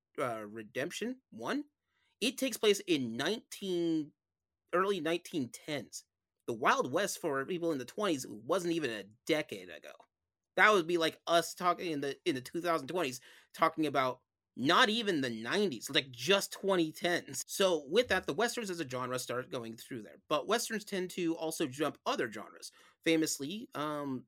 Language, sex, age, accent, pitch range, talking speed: English, male, 30-49, American, 120-165 Hz, 170 wpm